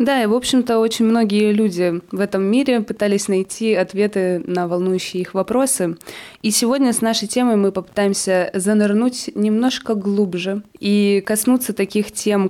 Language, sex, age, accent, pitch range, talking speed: Russian, female, 20-39, native, 185-230 Hz, 150 wpm